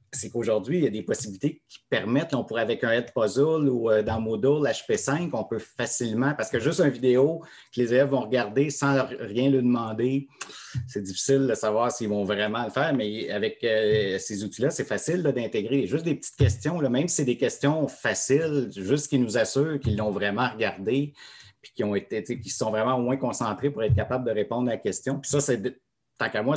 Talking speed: 220 wpm